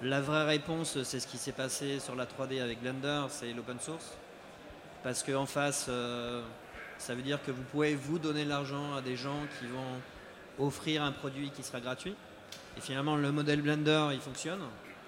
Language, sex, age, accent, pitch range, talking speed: French, male, 30-49, French, 135-155 Hz, 185 wpm